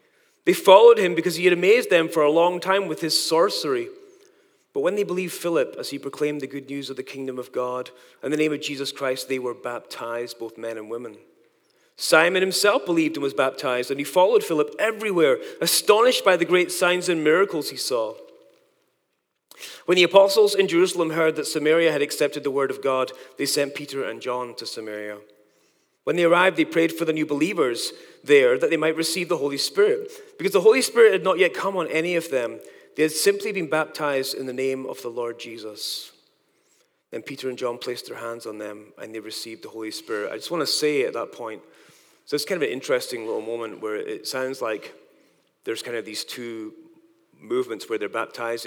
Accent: British